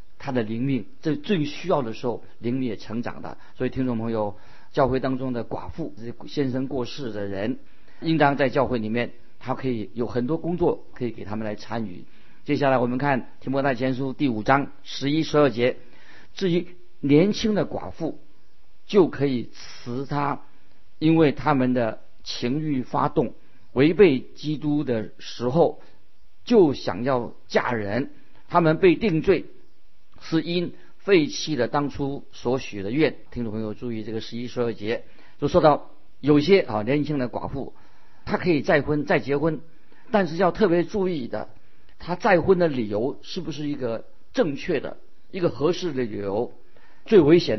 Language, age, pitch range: Chinese, 50-69, 120-160 Hz